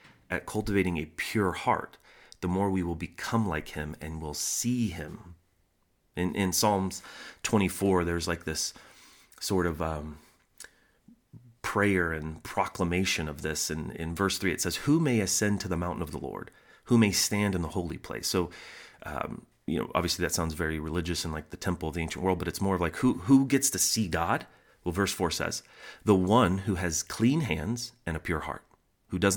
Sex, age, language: male, 30-49, English